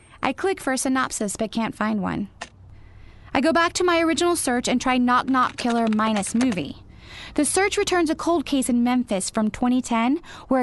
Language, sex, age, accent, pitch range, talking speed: English, female, 20-39, American, 215-295 Hz, 185 wpm